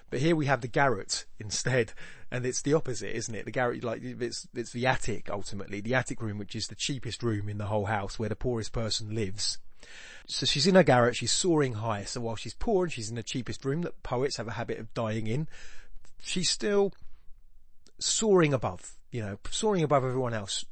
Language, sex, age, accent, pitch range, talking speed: English, male, 30-49, British, 105-135 Hz, 215 wpm